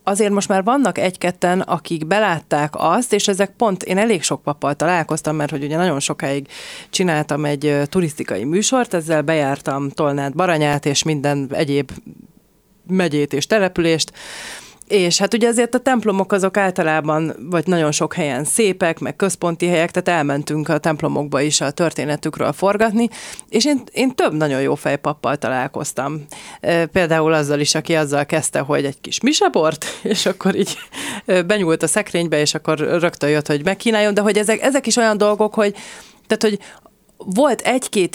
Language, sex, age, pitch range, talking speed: Hungarian, female, 30-49, 155-205 Hz, 155 wpm